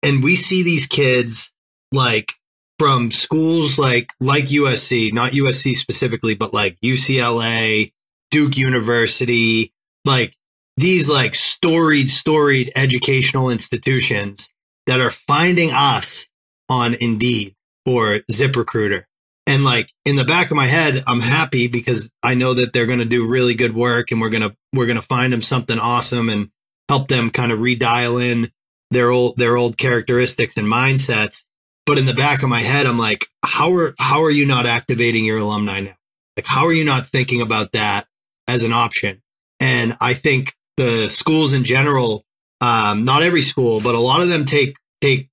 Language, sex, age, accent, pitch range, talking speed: English, male, 20-39, American, 115-140 Hz, 170 wpm